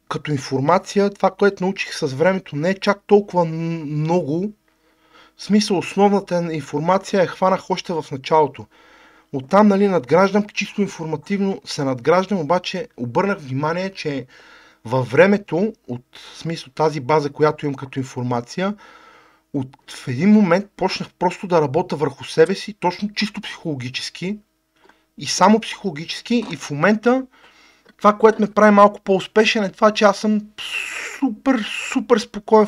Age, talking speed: 40-59, 145 wpm